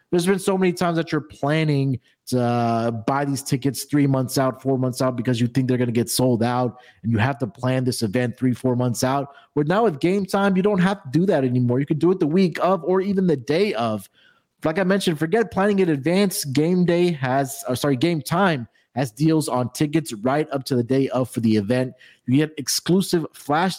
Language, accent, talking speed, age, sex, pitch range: English, American, 235 wpm, 30-49, male, 125-155 Hz